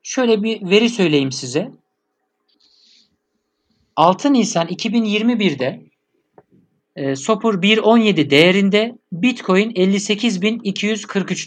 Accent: native